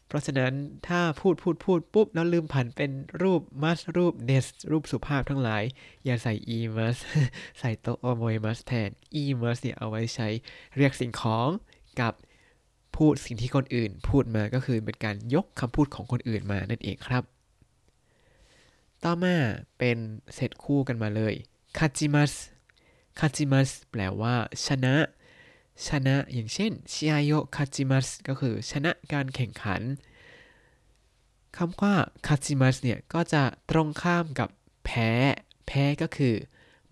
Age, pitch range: 20-39, 120-150 Hz